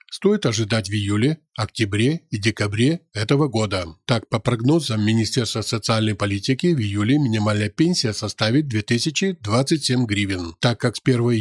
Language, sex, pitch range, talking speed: Ukrainian, male, 110-140 Hz, 135 wpm